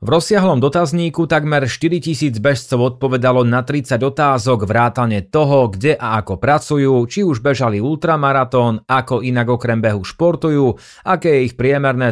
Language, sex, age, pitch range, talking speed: Slovak, male, 30-49, 115-140 Hz, 145 wpm